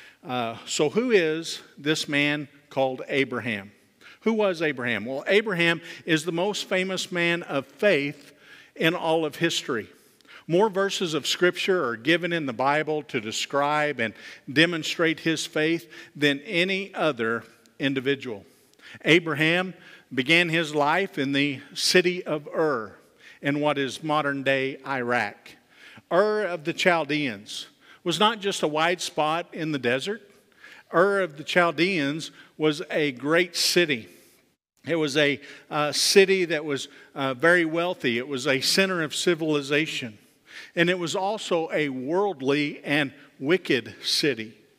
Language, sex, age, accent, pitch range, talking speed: English, male, 50-69, American, 140-175 Hz, 140 wpm